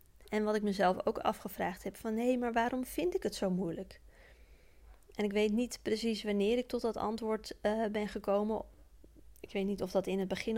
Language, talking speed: Dutch, 210 wpm